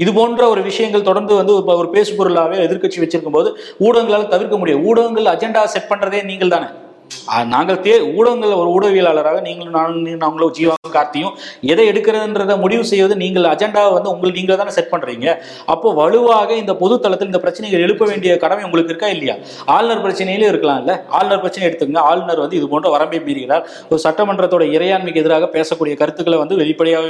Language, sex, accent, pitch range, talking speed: Tamil, male, native, 175-225 Hz, 115 wpm